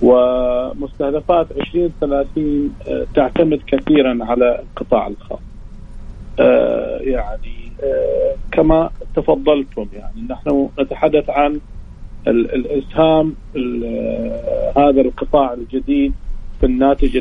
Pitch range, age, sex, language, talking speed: 130-170 Hz, 40-59, male, Arabic, 75 wpm